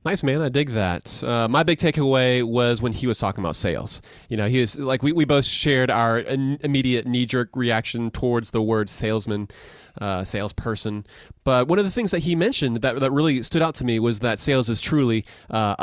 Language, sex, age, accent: English, male, 30-49, American